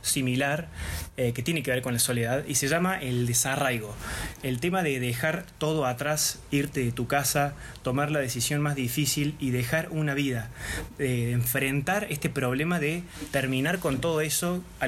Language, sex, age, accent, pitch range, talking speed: Spanish, male, 20-39, Argentinian, 125-150 Hz, 175 wpm